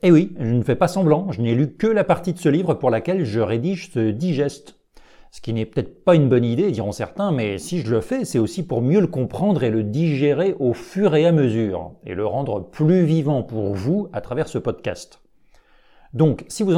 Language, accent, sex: French, French, male